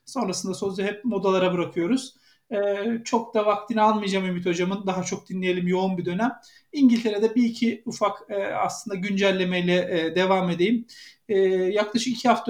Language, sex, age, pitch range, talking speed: Turkish, male, 50-69, 170-215 Hz, 155 wpm